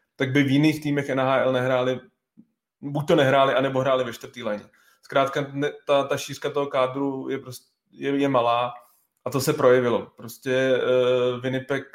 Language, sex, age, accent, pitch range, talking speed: Czech, male, 20-39, native, 125-135 Hz, 165 wpm